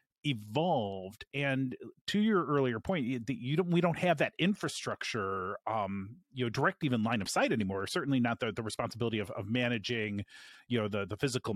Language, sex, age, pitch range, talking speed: English, male, 30-49, 110-145 Hz, 185 wpm